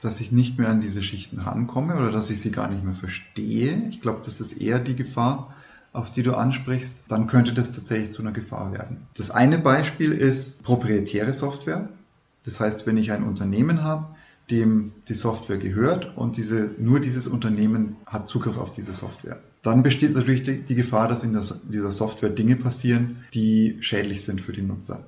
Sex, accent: male, German